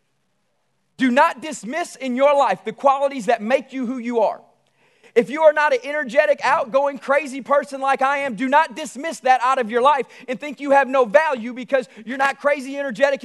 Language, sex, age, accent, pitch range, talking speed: English, male, 40-59, American, 235-295 Hz, 205 wpm